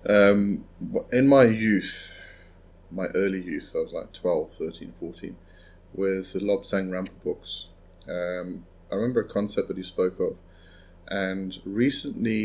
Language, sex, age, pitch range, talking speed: English, male, 30-49, 85-100 Hz, 140 wpm